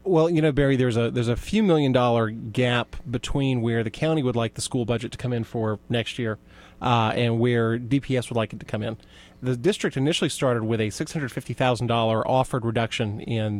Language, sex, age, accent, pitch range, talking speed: English, male, 30-49, American, 115-135 Hz, 205 wpm